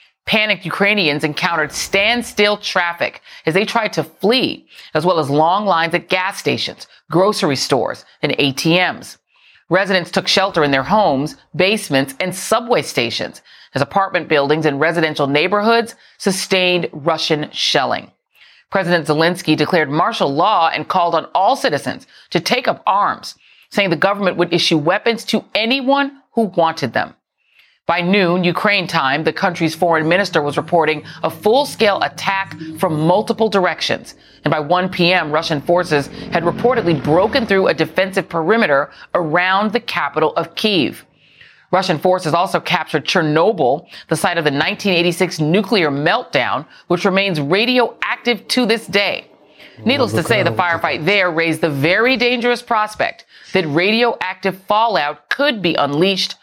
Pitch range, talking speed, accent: 160-205 Hz, 145 wpm, American